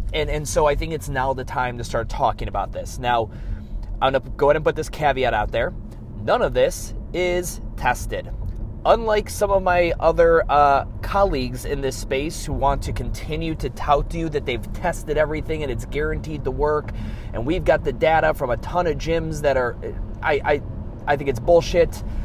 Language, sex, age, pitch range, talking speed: English, male, 30-49, 115-155 Hz, 200 wpm